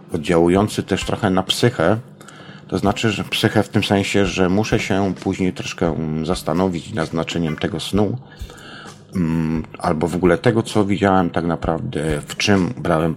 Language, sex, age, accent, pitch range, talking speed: Polish, male, 50-69, native, 85-105 Hz, 150 wpm